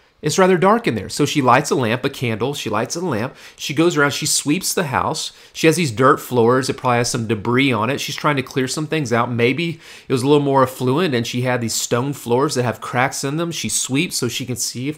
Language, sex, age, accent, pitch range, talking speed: English, male, 40-59, American, 115-140 Hz, 270 wpm